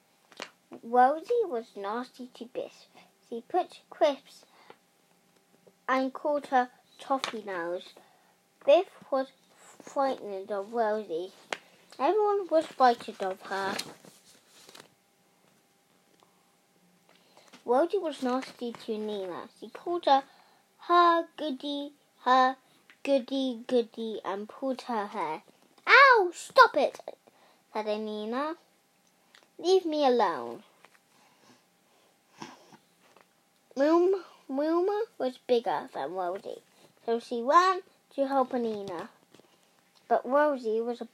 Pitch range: 225-315 Hz